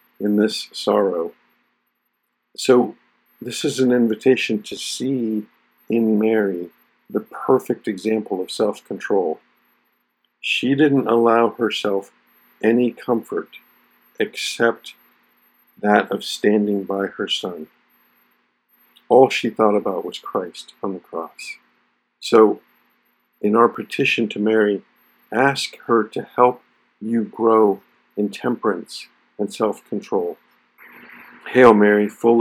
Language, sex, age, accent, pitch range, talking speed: English, male, 50-69, American, 105-115 Hz, 105 wpm